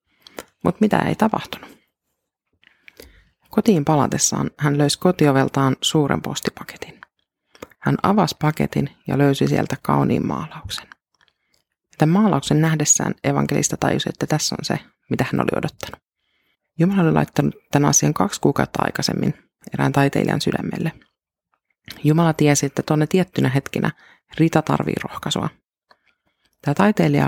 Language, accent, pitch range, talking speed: Finnish, native, 140-175 Hz, 120 wpm